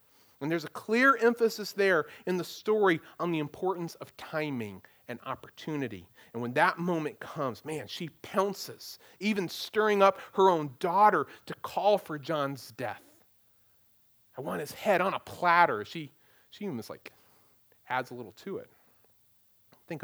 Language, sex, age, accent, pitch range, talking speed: English, male, 40-59, American, 145-210 Hz, 155 wpm